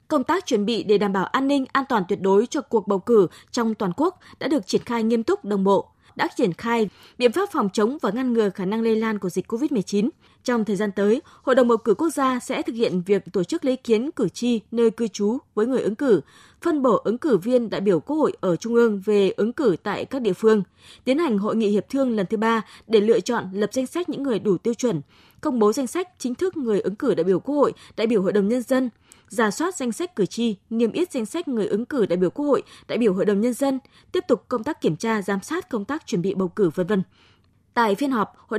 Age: 20-39